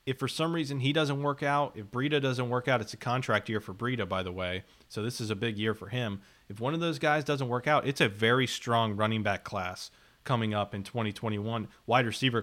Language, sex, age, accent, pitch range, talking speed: English, male, 30-49, American, 110-140 Hz, 245 wpm